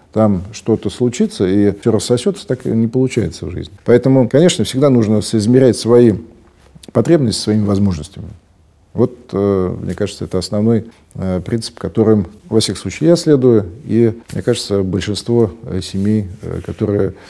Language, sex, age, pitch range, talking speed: Russian, male, 40-59, 105-130 Hz, 135 wpm